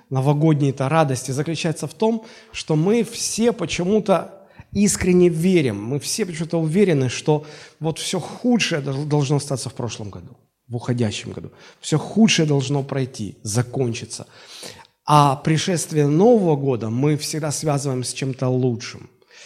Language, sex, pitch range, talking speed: Russian, male, 130-180 Hz, 135 wpm